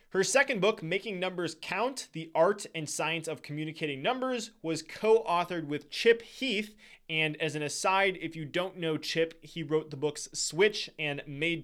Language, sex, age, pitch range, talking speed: English, male, 20-39, 150-195 Hz, 175 wpm